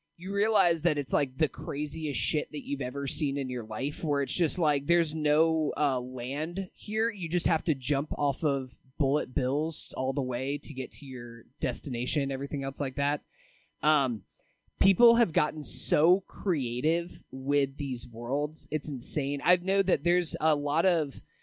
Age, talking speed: 20-39, 175 wpm